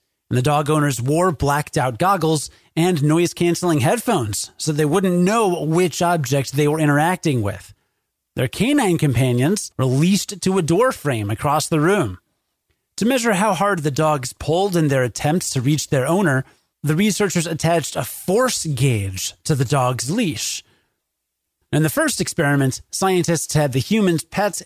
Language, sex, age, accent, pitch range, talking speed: English, male, 30-49, American, 130-175 Hz, 160 wpm